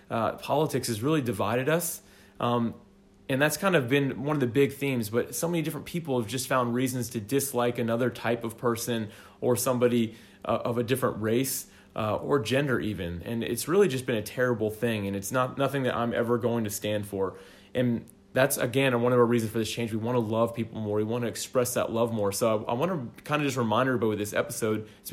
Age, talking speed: 20-39, 235 wpm